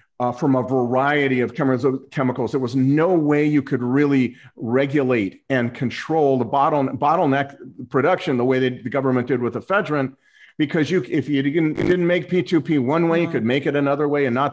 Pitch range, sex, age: 125-150 Hz, male, 40-59